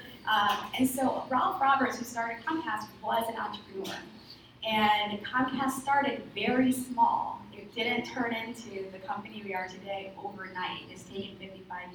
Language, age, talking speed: English, 20-39, 145 wpm